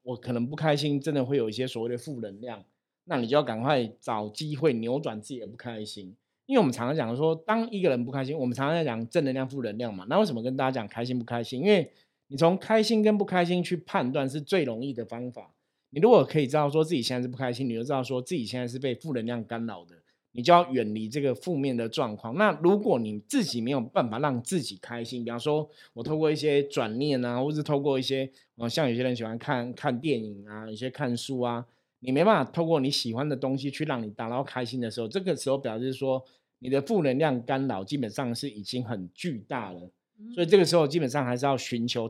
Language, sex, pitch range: Chinese, male, 120-150 Hz